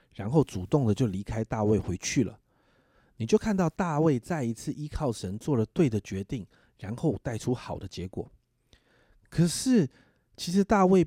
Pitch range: 105-150 Hz